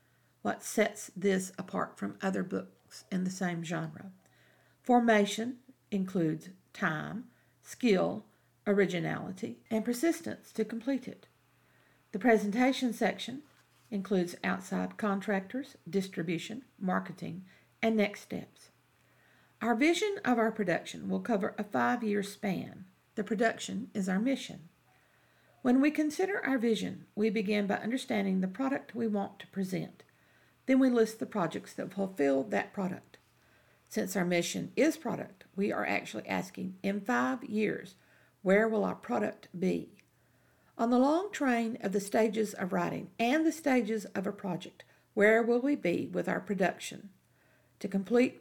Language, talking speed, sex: English, 140 wpm, female